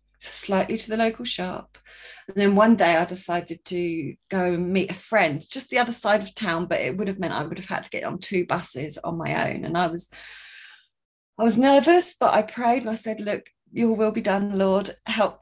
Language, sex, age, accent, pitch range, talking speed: English, female, 30-49, British, 185-230 Hz, 230 wpm